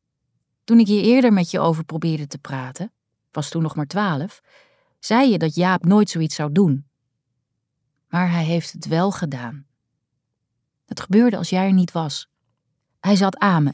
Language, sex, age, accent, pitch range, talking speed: Dutch, female, 30-49, Dutch, 145-200 Hz, 175 wpm